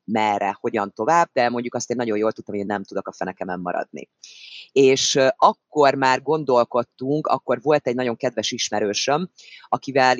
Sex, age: female, 30-49